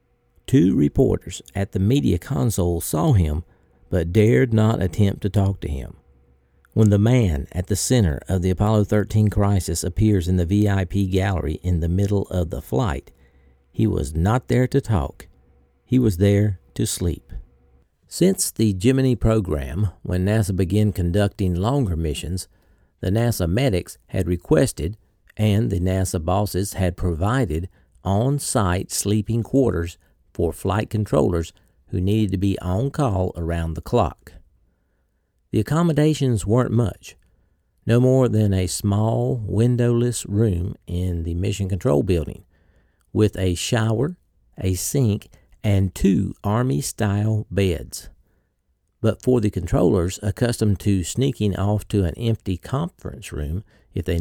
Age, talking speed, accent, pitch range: 50-69, 140 wpm, American, 90-110 Hz